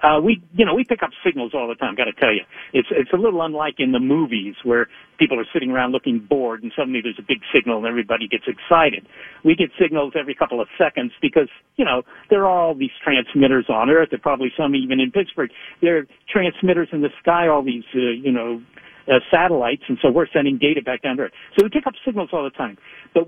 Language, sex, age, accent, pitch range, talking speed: English, male, 60-79, American, 135-190 Hz, 245 wpm